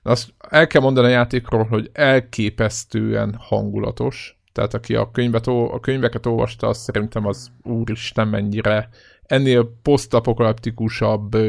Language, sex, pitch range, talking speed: Hungarian, male, 105-120 Hz, 120 wpm